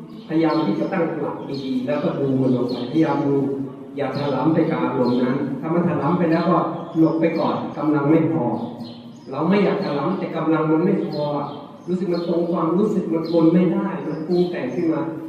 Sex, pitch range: male, 140-175 Hz